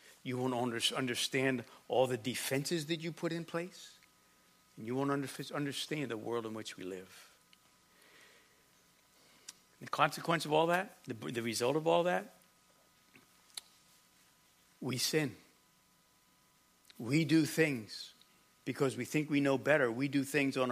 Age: 60-79